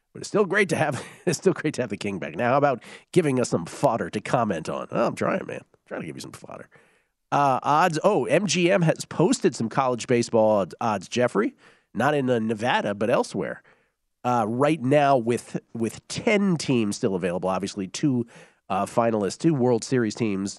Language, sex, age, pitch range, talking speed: English, male, 40-59, 105-145 Hz, 200 wpm